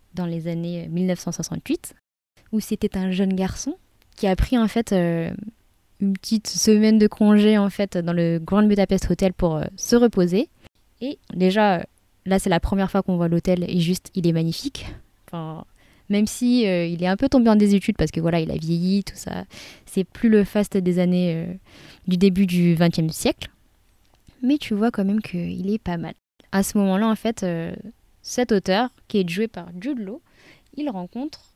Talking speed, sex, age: 190 wpm, female, 20-39